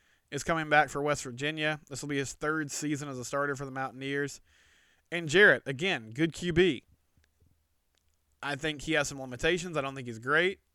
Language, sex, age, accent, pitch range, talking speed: English, male, 20-39, American, 125-155 Hz, 190 wpm